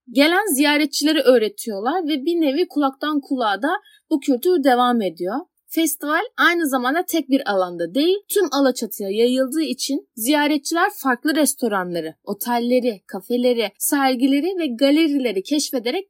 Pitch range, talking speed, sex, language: 235-305 Hz, 125 wpm, female, Turkish